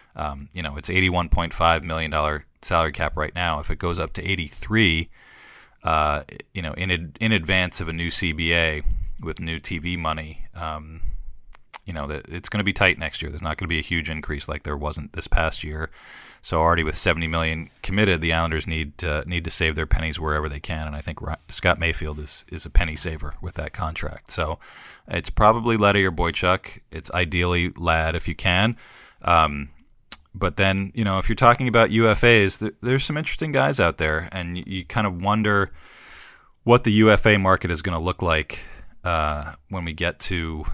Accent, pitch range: American, 80-95 Hz